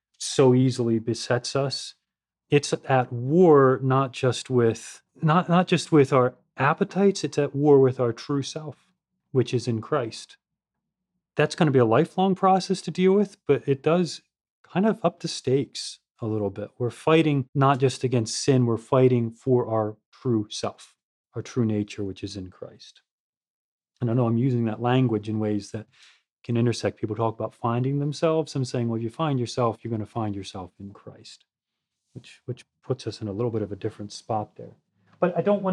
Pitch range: 115-150 Hz